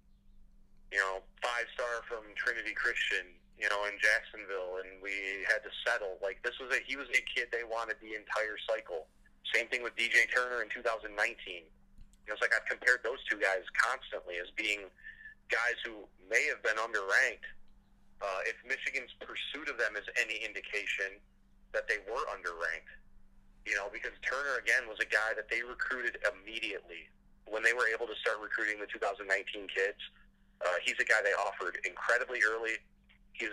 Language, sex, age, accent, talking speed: English, male, 30-49, American, 170 wpm